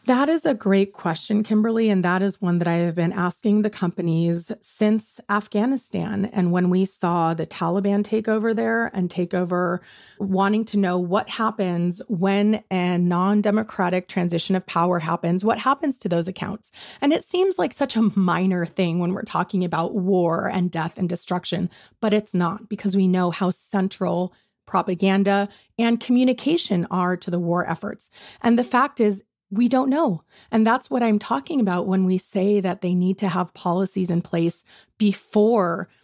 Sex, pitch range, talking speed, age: female, 180-220 Hz, 175 wpm, 30-49